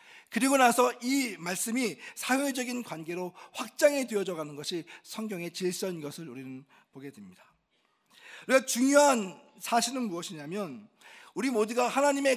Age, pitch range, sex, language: 40-59, 165-250 Hz, male, Korean